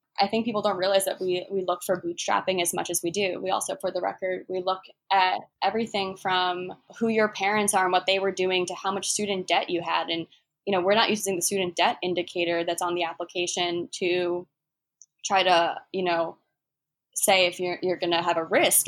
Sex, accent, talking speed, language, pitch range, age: female, American, 225 wpm, English, 175-210 Hz, 20-39